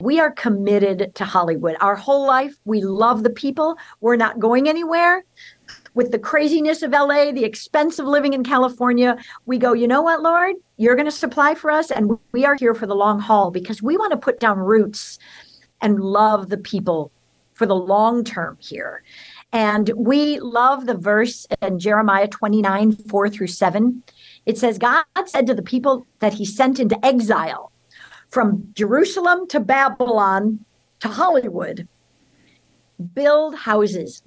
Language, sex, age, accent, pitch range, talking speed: English, female, 50-69, American, 210-280 Hz, 165 wpm